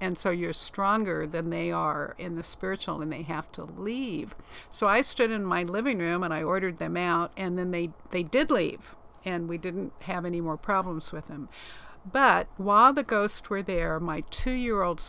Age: 50-69